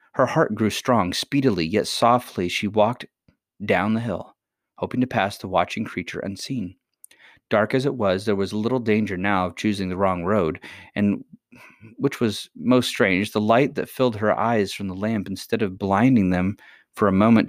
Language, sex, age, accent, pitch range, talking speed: English, male, 30-49, American, 95-115 Hz, 185 wpm